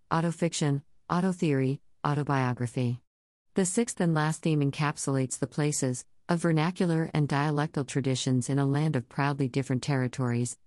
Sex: female